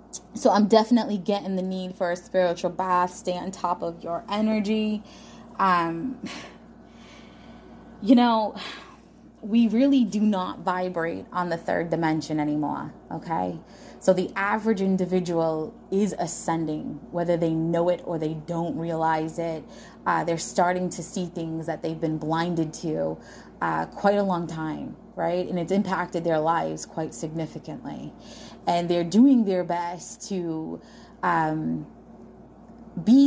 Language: English